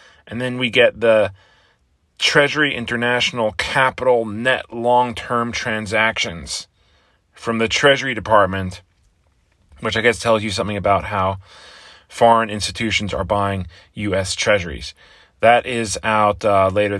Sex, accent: male, American